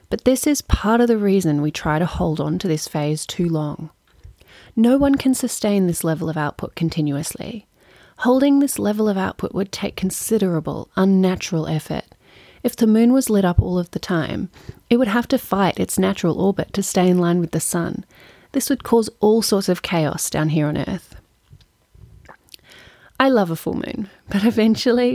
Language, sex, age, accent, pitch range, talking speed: English, female, 30-49, Australian, 165-215 Hz, 190 wpm